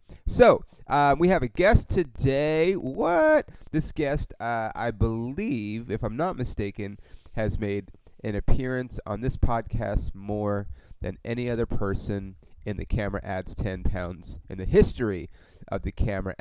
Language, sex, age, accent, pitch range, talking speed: English, male, 30-49, American, 95-120 Hz, 150 wpm